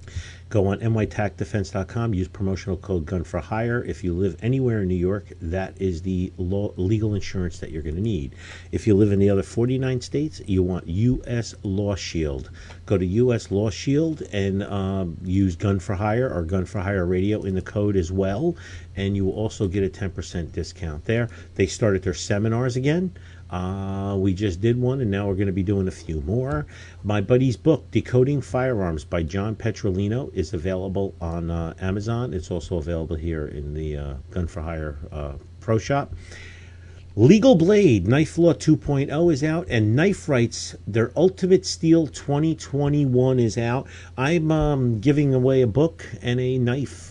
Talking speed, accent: 170 wpm, American